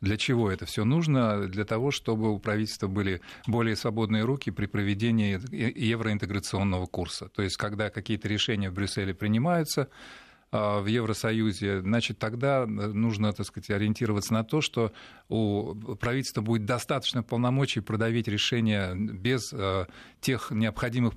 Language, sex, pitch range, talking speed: Russian, male, 100-120 Hz, 130 wpm